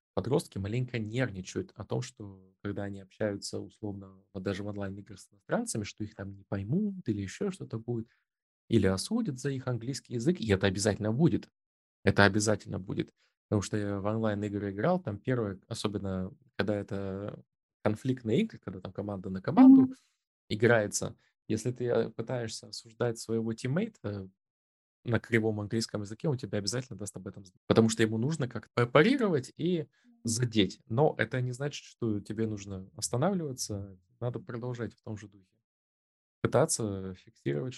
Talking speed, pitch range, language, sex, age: 155 wpm, 100-125 Hz, Russian, male, 20-39